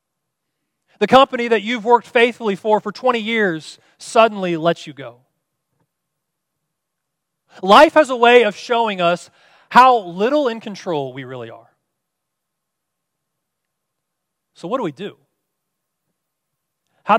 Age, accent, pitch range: 30-49, American, 155-235 Hz